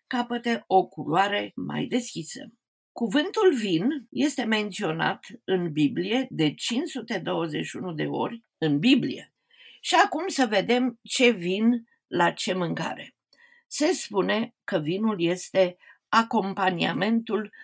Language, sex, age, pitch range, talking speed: Romanian, female, 50-69, 185-260 Hz, 110 wpm